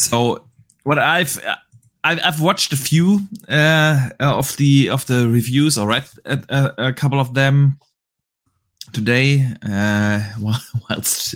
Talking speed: 120 wpm